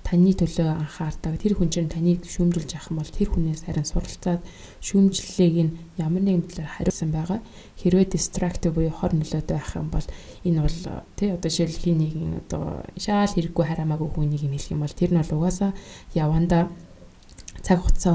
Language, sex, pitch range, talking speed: English, female, 155-180 Hz, 140 wpm